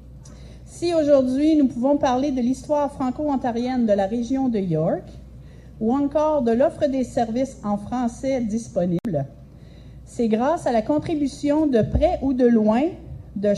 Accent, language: Canadian, French